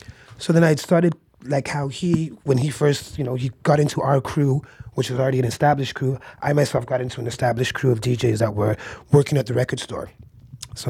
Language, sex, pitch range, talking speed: English, male, 125-140 Hz, 220 wpm